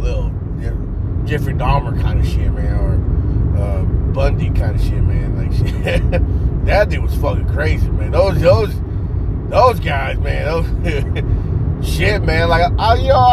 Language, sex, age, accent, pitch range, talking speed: English, male, 30-49, American, 90-105 Hz, 150 wpm